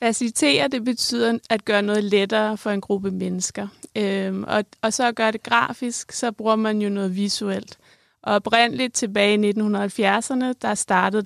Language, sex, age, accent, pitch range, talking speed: Danish, female, 20-39, native, 195-225 Hz, 170 wpm